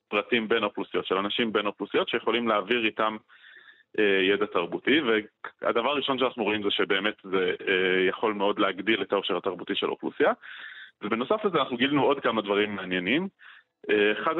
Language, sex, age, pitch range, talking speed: Hebrew, male, 30-49, 110-145 Hz, 165 wpm